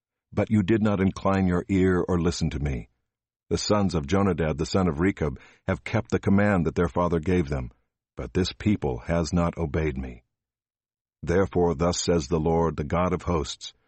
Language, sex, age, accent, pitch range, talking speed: English, male, 50-69, American, 85-100 Hz, 190 wpm